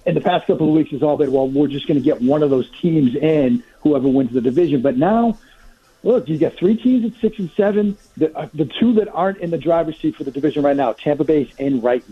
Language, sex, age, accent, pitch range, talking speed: English, male, 50-69, American, 130-170 Hz, 265 wpm